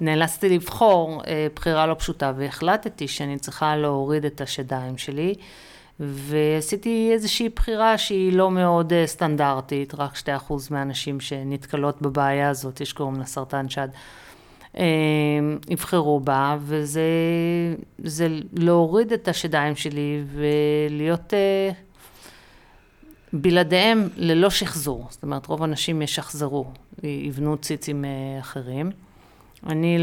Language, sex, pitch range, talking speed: Hebrew, female, 145-175 Hz, 100 wpm